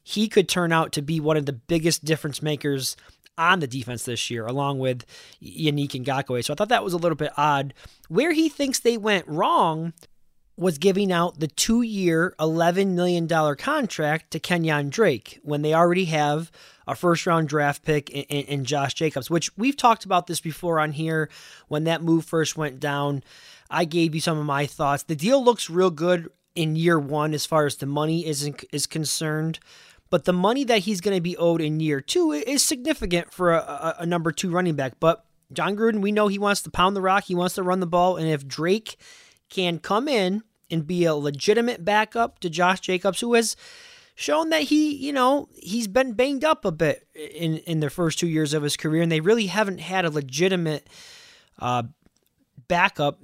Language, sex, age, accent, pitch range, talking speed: English, male, 20-39, American, 150-195 Hz, 200 wpm